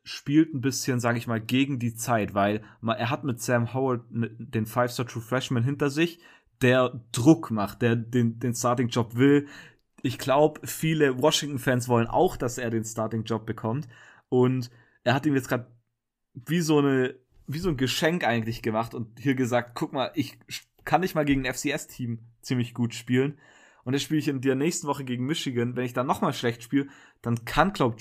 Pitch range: 115-135 Hz